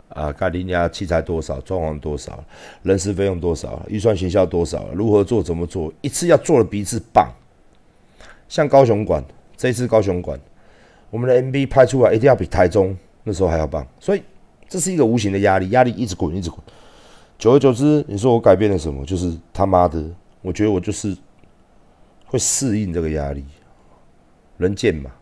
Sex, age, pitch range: male, 30-49, 80-115 Hz